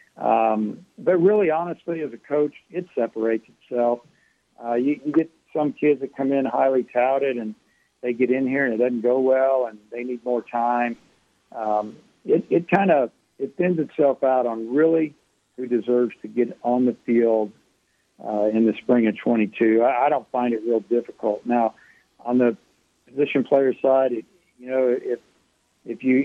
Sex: male